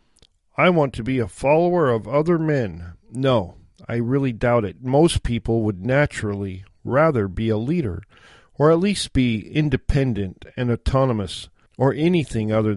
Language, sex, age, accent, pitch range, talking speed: English, male, 50-69, American, 105-135 Hz, 150 wpm